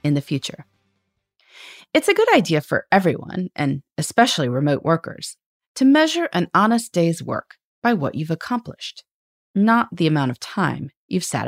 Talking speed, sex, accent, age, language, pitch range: 155 wpm, female, American, 30-49, English, 145-230 Hz